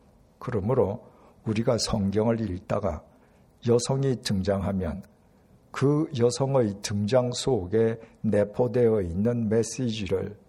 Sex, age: male, 60-79